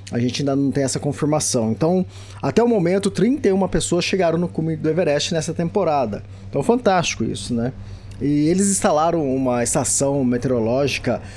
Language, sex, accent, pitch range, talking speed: Portuguese, male, Brazilian, 120-185 Hz, 160 wpm